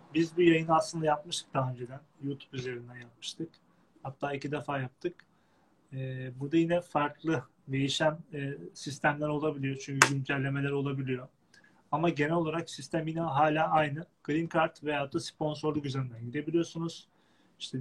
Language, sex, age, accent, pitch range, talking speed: Turkish, male, 30-49, native, 135-160 Hz, 130 wpm